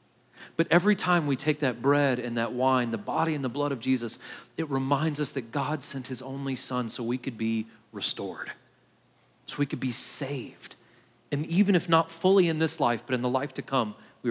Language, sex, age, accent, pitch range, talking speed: English, male, 40-59, American, 120-160 Hz, 215 wpm